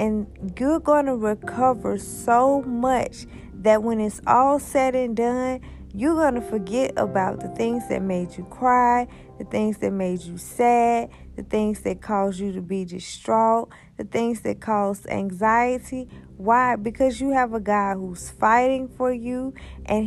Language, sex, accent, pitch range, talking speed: English, female, American, 215-265 Hz, 165 wpm